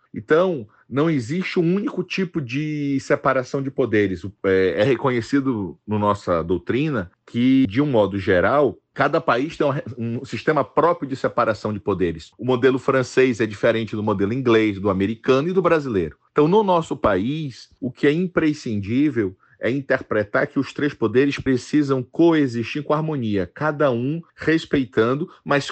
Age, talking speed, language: 40-59, 150 wpm, Portuguese